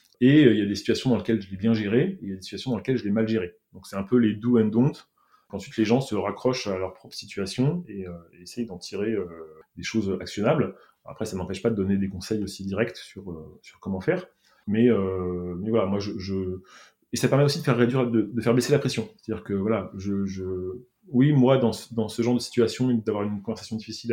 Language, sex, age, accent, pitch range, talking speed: French, male, 20-39, French, 95-115 Hz, 260 wpm